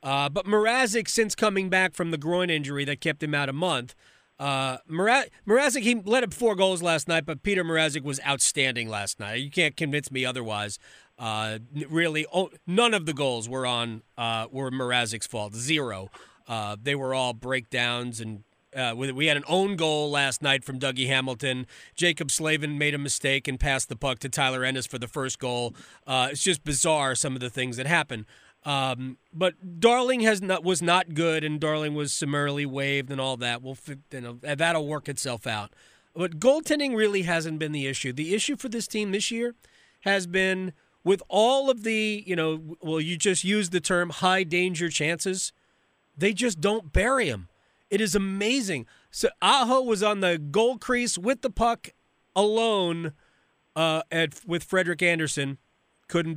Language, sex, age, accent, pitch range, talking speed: English, male, 30-49, American, 130-185 Hz, 185 wpm